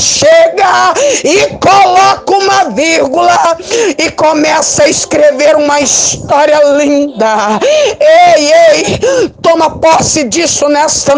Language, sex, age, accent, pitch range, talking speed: Portuguese, female, 50-69, Brazilian, 295-345 Hz, 95 wpm